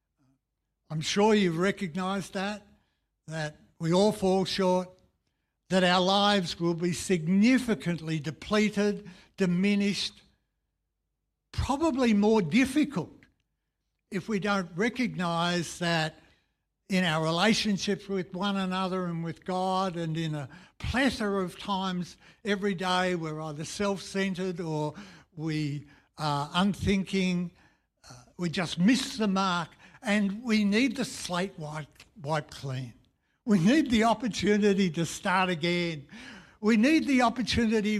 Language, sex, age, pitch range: English, male, 60-79, 165-205 Hz